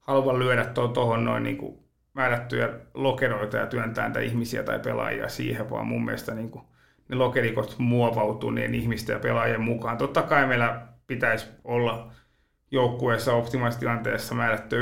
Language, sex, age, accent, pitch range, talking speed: Finnish, male, 30-49, native, 115-130 Hz, 135 wpm